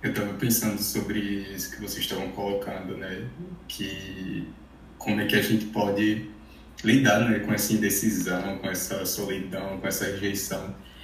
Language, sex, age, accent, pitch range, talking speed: Portuguese, male, 20-39, Brazilian, 105-120 Hz, 150 wpm